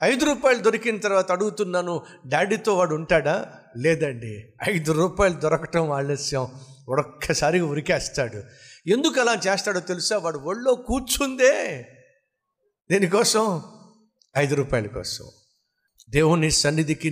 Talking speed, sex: 100 wpm, male